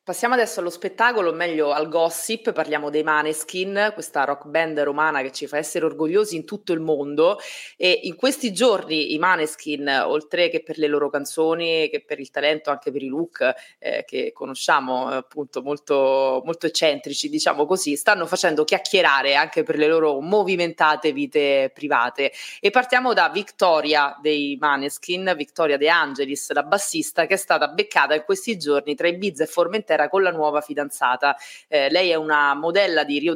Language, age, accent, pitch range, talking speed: Italian, 20-39, native, 145-195 Hz, 175 wpm